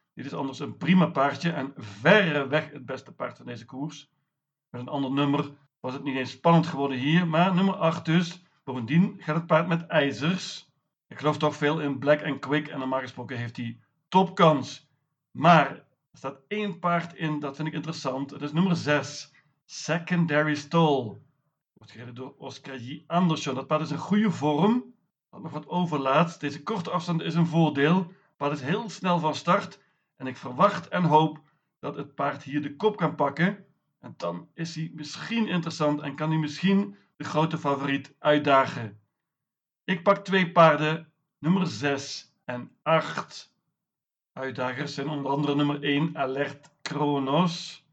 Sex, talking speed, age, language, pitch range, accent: male, 170 wpm, 50-69, Dutch, 140-165 Hz, Dutch